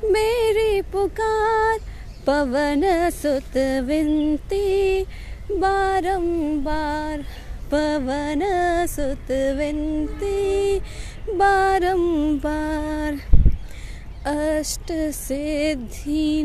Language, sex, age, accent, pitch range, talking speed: English, female, 20-39, Indian, 300-390 Hz, 35 wpm